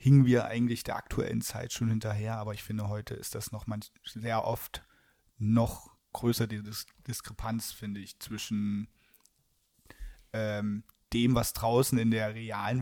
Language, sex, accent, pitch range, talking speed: German, male, German, 105-120 Hz, 150 wpm